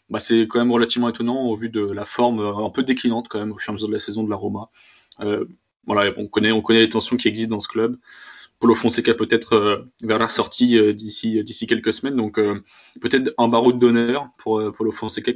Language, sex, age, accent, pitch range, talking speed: French, male, 20-39, French, 105-120 Hz, 255 wpm